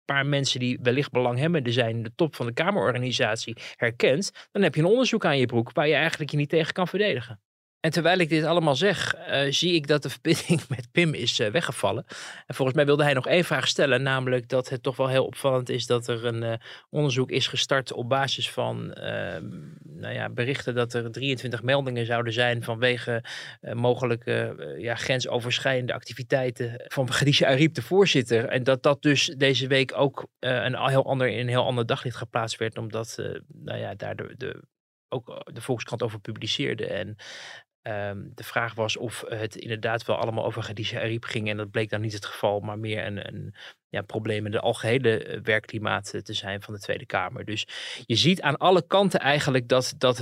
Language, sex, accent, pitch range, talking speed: Dutch, male, Dutch, 115-140 Hz, 200 wpm